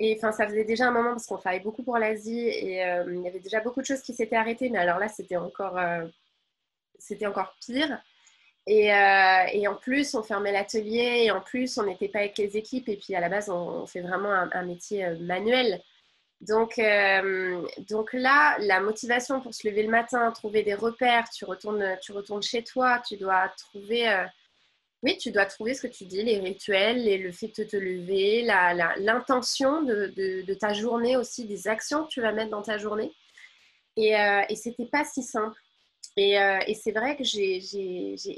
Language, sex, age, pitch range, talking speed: French, female, 20-39, 200-240 Hz, 215 wpm